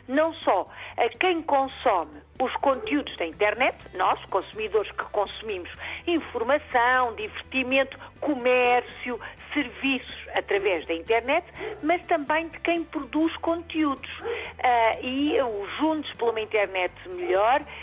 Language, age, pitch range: Portuguese, 50-69, 240-345 Hz